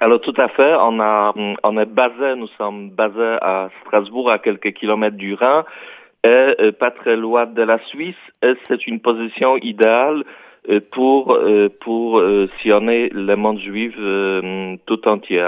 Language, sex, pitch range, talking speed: Italian, male, 95-115 Hz, 150 wpm